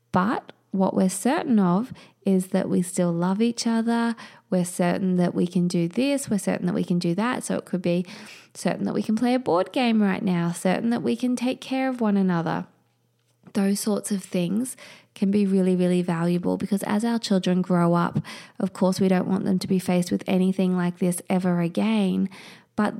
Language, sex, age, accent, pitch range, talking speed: English, female, 20-39, Australian, 180-205 Hz, 210 wpm